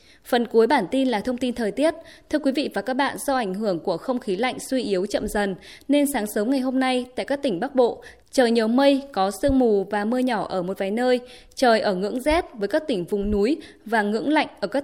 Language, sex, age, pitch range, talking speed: Vietnamese, female, 20-39, 210-270 Hz, 260 wpm